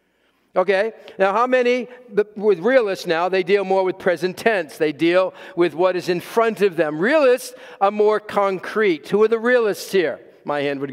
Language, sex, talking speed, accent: English, male, 185 wpm, American